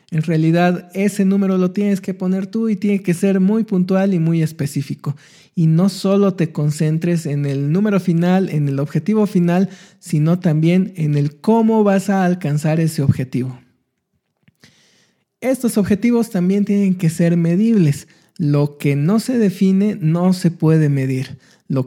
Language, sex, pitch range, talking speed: Spanish, male, 160-205 Hz, 160 wpm